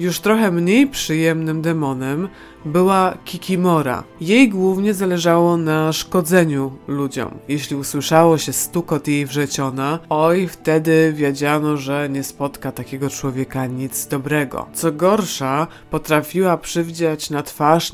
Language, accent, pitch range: Polish, native, 145-175 Hz